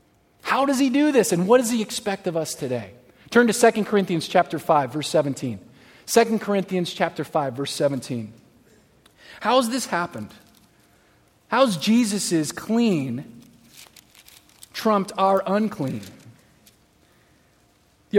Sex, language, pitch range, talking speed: male, English, 150-220 Hz, 120 wpm